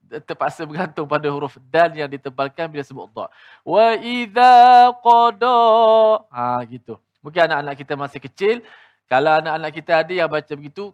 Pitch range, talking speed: 140-195 Hz, 150 wpm